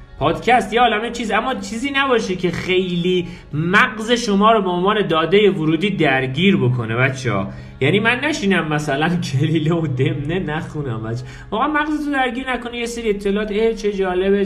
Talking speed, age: 160 wpm, 40-59